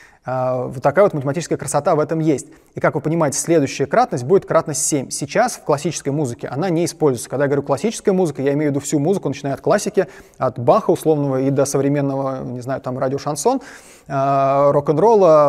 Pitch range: 140-165 Hz